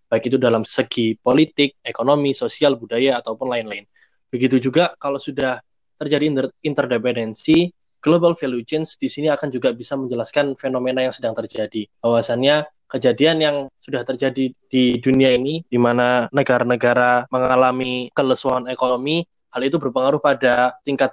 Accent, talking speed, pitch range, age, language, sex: native, 140 wpm, 125-150 Hz, 20-39, Indonesian, male